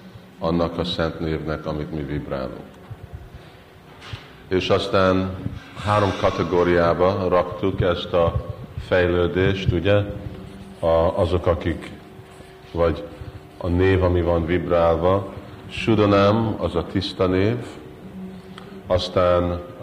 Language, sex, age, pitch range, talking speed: Hungarian, male, 50-69, 85-105 Hz, 95 wpm